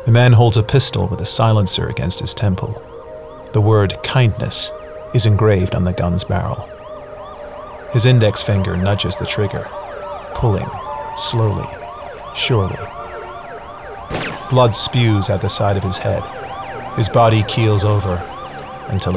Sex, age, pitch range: male, 40-59, 90-110 Hz